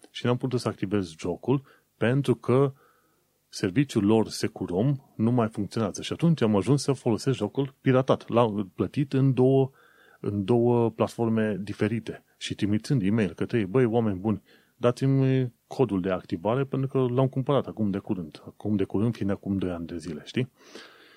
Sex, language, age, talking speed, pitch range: male, Romanian, 30-49, 170 wpm, 100-130 Hz